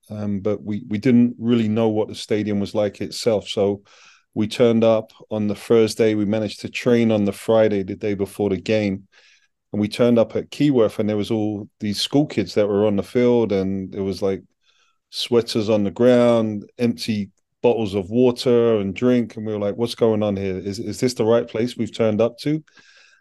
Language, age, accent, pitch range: English, 30-49, British, 100-120 Hz